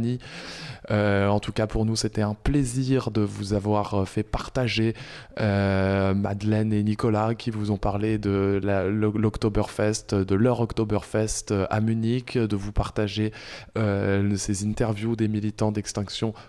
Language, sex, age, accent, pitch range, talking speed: French, male, 20-39, French, 100-115 Hz, 140 wpm